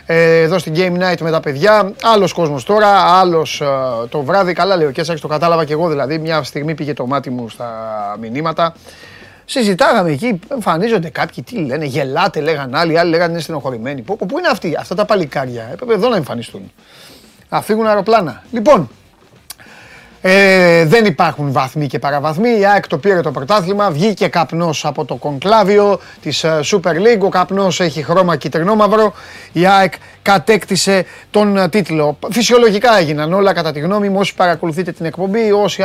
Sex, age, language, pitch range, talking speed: male, 30-49, Greek, 155-205 Hz, 160 wpm